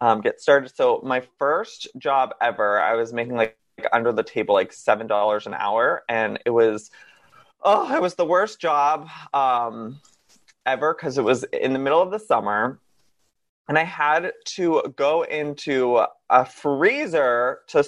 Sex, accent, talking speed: male, American, 165 wpm